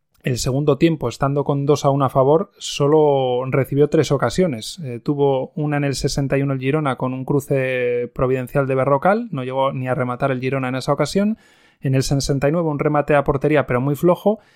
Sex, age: male, 20-39